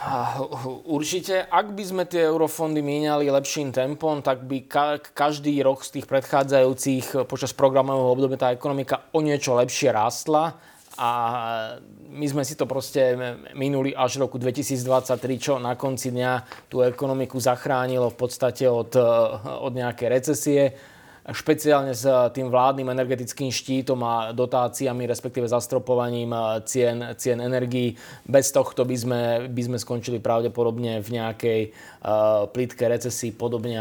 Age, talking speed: 20-39, 135 wpm